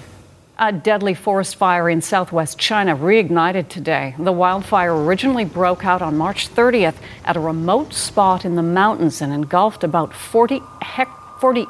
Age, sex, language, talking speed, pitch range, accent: 50-69, female, English, 155 wpm, 170-220 Hz, American